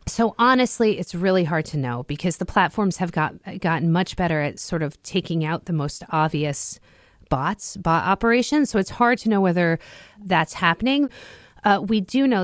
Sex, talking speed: female, 180 wpm